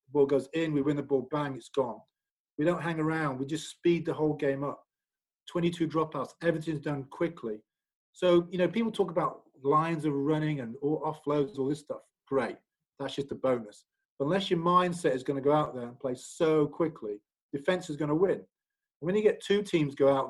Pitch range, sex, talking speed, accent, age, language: 135-170 Hz, male, 215 wpm, British, 40-59, English